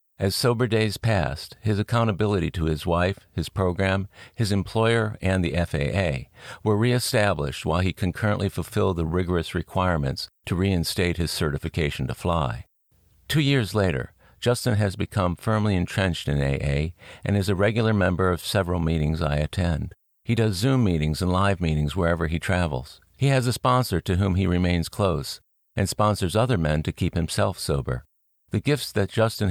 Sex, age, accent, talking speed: male, 50-69, American, 165 wpm